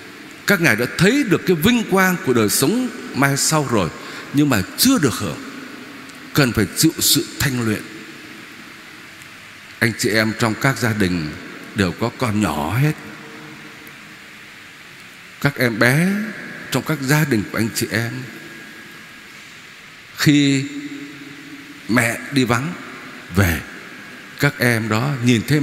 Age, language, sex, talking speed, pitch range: 60-79, Vietnamese, male, 135 wpm, 130-175 Hz